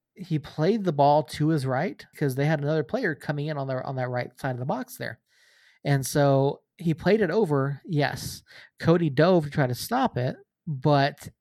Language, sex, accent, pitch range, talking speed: English, male, American, 135-165 Hz, 205 wpm